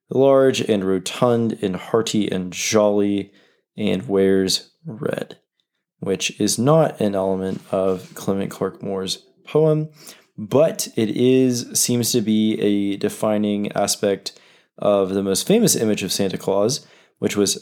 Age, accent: 20-39, American